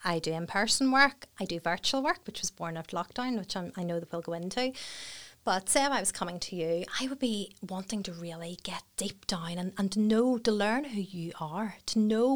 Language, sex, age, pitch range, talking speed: English, female, 30-49, 170-220 Hz, 235 wpm